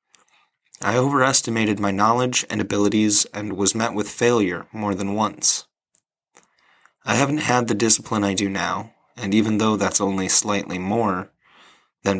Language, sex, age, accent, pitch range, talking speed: English, male, 30-49, American, 100-125 Hz, 150 wpm